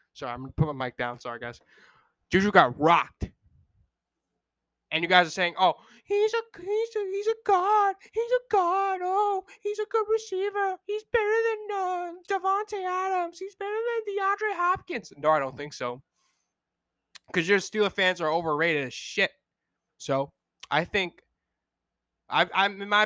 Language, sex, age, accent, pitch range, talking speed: English, male, 20-39, American, 160-235 Hz, 165 wpm